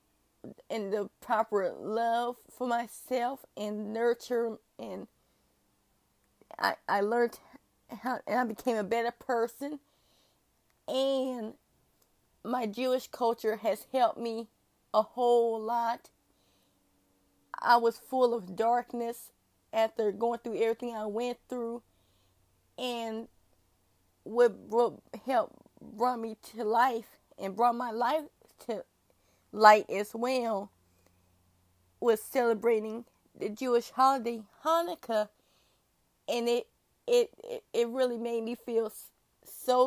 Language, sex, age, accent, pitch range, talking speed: English, female, 20-39, American, 215-245 Hz, 110 wpm